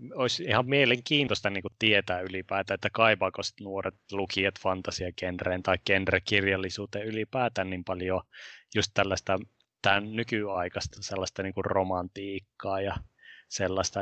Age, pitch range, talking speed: 20-39, 95-105 Hz, 105 wpm